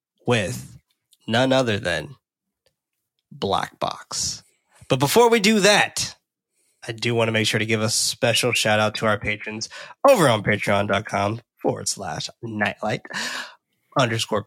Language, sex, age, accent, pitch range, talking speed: English, male, 20-39, American, 110-145 Hz, 135 wpm